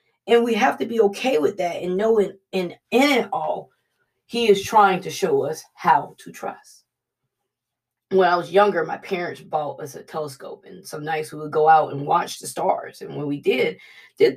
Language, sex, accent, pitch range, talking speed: English, female, American, 185-280 Hz, 200 wpm